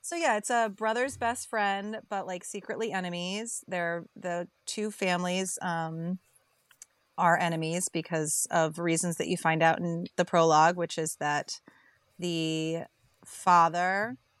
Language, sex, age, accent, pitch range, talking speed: English, female, 30-49, American, 165-190 Hz, 140 wpm